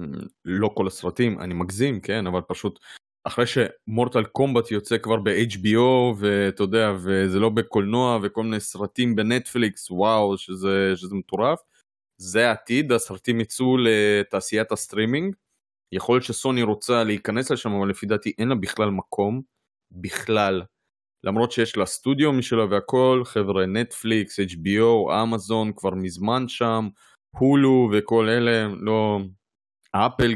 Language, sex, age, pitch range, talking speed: Hebrew, male, 20-39, 100-120 Hz, 130 wpm